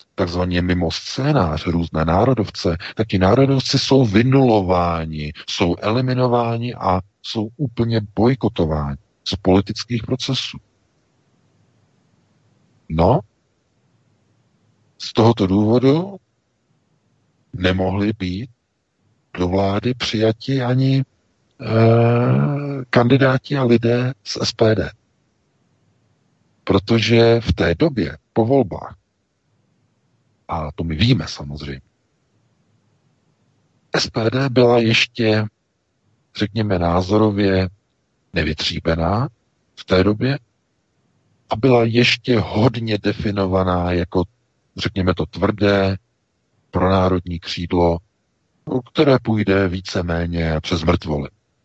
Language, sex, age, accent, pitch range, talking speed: Czech, male, 50-69, native, 90-120 Hz, 80 wpm